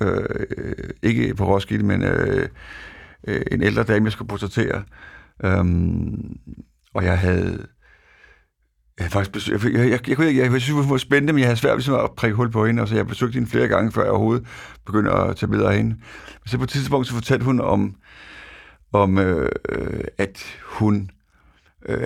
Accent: native